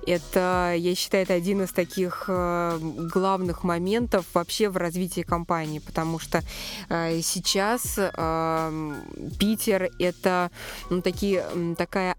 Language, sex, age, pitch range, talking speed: Russian, female, 20-39, 165-195 Hz, 105 wpm